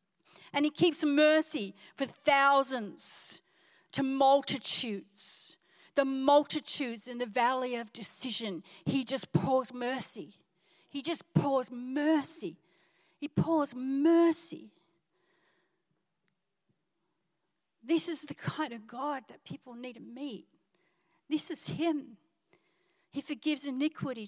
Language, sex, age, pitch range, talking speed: English, female, 50-69, 230-295 Hz, 105 wpm